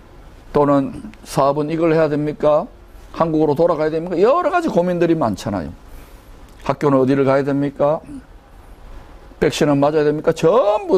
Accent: native